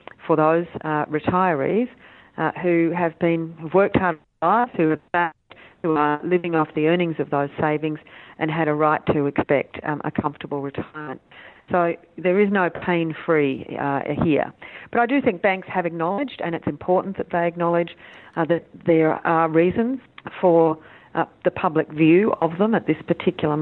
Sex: female